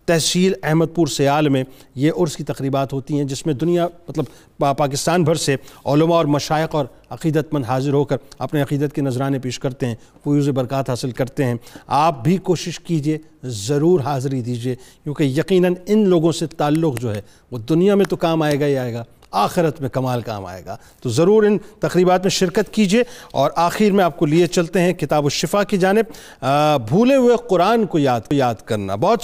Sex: male